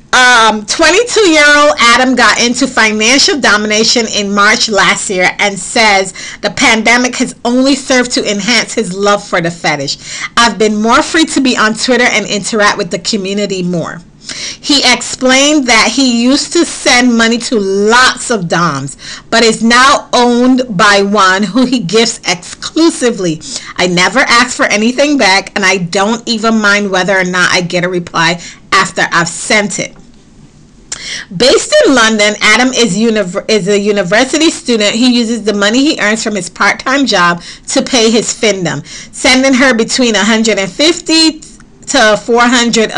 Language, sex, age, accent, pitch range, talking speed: English, female, 40-59, American, 205-255 Hz, 155 wpm